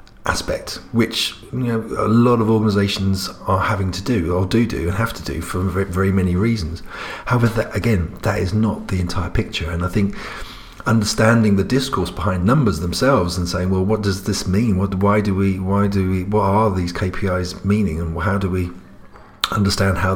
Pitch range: 90-105 Hz